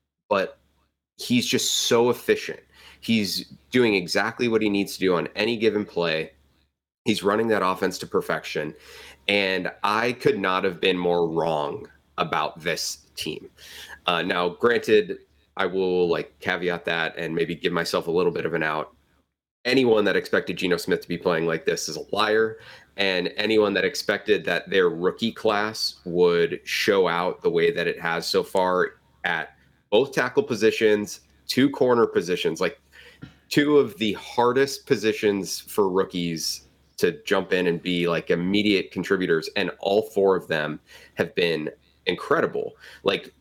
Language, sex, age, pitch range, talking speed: English, male, 30-49, 90-150 Hz, 160 wpm